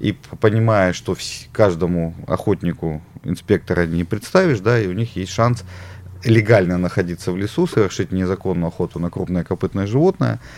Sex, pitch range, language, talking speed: male, 90-120 Hz, Russian, 140 wpm